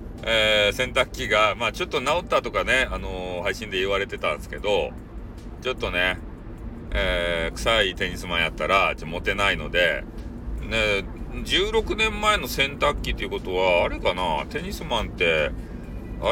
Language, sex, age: Japanese, male, 40-59